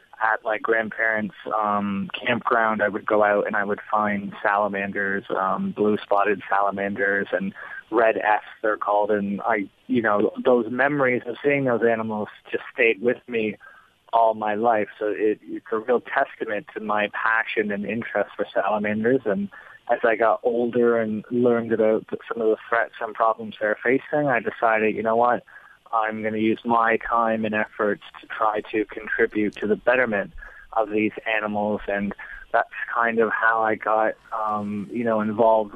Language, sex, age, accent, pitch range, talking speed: English, male, 20-39, American, 105-115 Hz, 170 wpm